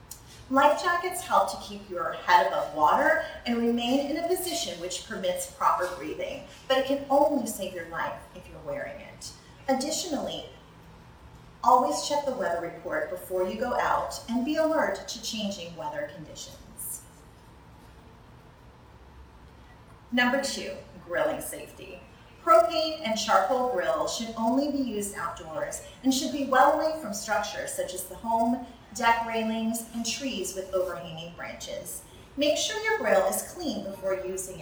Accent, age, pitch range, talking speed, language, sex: American, 30-49, 190-290 Hz, 145 wpm, English, female